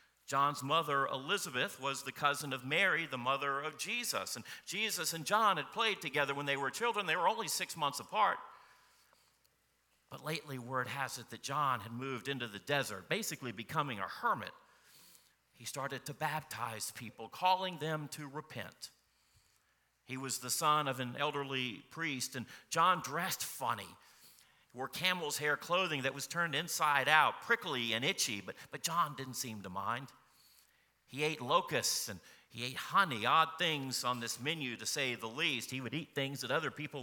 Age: 50-69